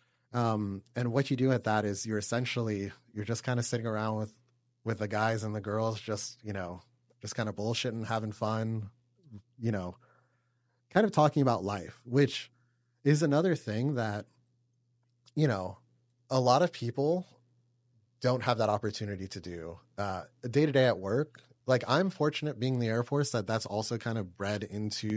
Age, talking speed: 30-49, 180 wpm